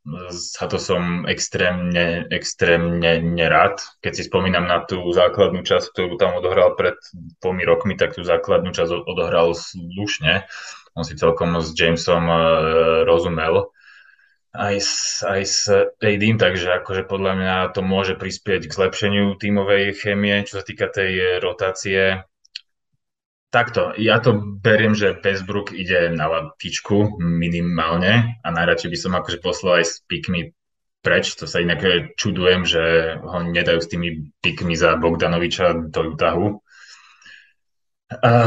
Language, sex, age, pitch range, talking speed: Slovak, male, 20-39, 85-110 Hz, 135 wpm